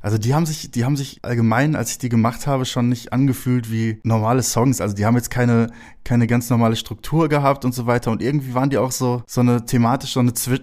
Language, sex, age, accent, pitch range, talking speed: German, male, 20-39, German, 110-130 Hz, 250 wpm